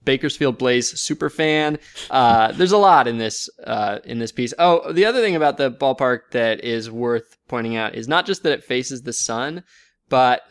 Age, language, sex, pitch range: 20-39, English, male, 125-175 Hz